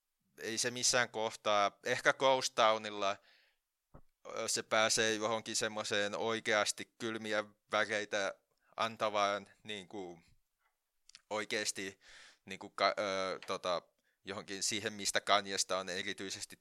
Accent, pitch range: native, 95-115 Hz